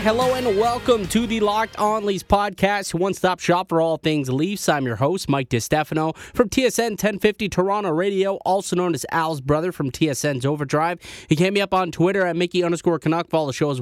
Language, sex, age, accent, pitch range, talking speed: English, male, 20-39, American, 140-190 Hz, 210 wpm